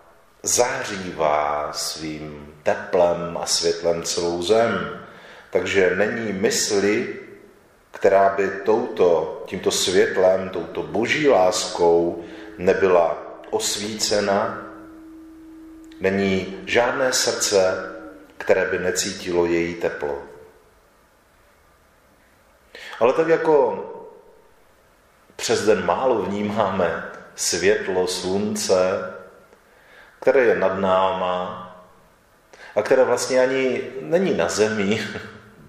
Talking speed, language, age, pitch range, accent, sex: 80 wpm, Czech, 40-59, 85-115 Hz, native, male